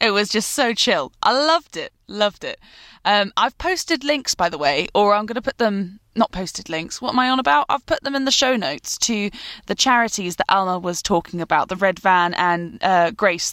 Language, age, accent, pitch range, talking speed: English, 10-29, British, 190-270 Hz, 230 wpm